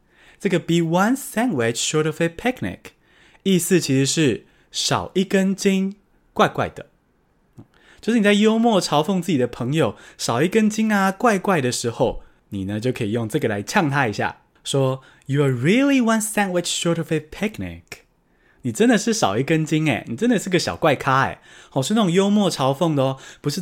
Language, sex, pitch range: Chinese, male, 135-195 Hz